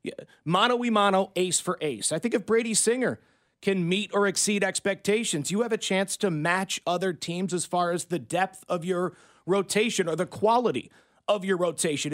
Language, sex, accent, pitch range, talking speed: English, male, American, 175-220 Hz, 190 wpm